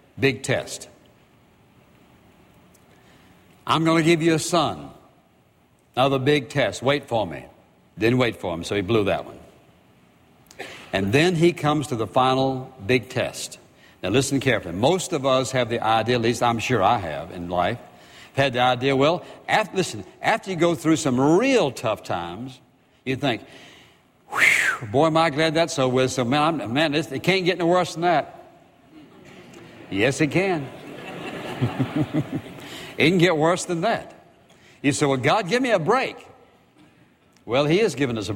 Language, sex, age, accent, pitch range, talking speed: English, male, 60-79, American, 120-150 Hz, 165 wpm